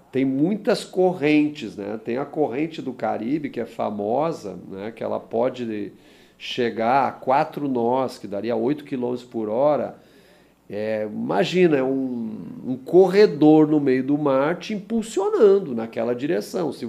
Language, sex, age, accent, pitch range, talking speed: Portuguese, male, 40-59, Brazilian, 140-225 Hz, 145 wpm